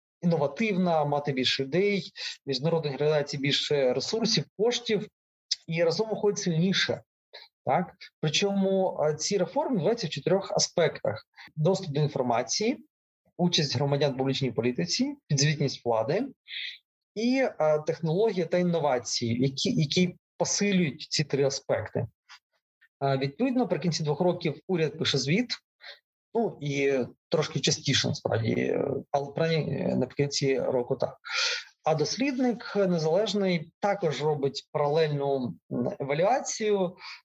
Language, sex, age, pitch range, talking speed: Ukrainian, male, 30-49, 140-195 Hz, 105 wpm